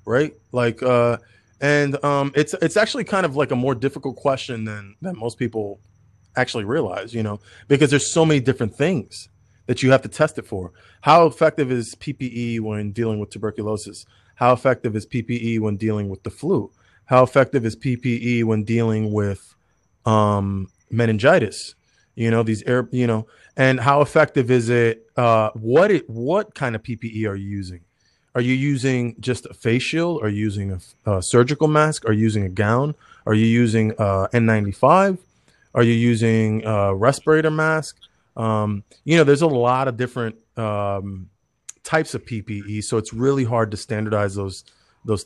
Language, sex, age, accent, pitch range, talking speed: English, male, 20-39, American, 110-135 Hz, 180 wpm